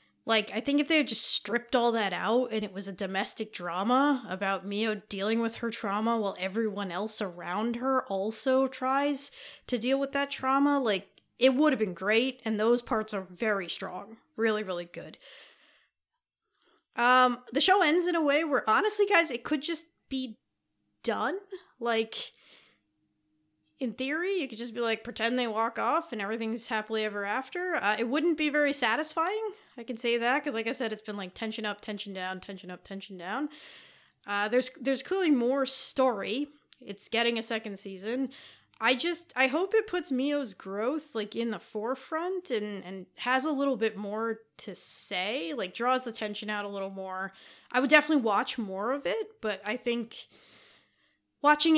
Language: English